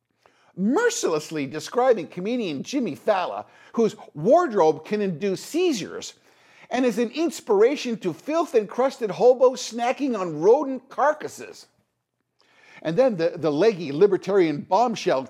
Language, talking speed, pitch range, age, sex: English, 110 wpm, 185-295 Hz, 50-69, male